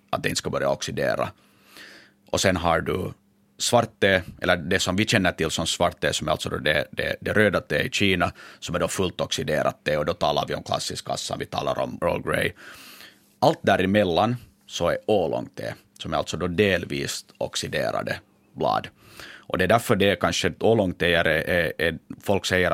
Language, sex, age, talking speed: Finnish, male, 30-49, 195 wpm